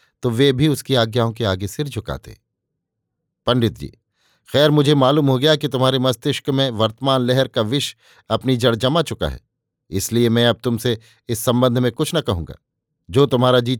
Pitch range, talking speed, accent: 115-145 Hz, 185 wpm, native